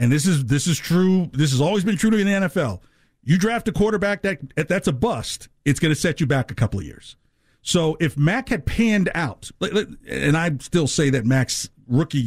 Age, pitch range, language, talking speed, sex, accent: 50-69, 125-170 Hz, English, 220 wpm, male, American